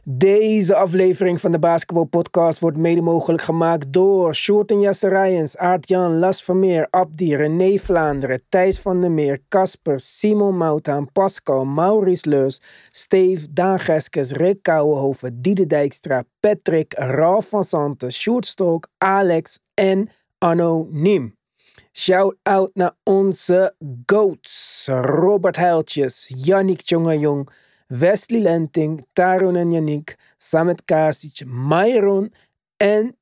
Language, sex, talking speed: Dutch, male, 115 wpm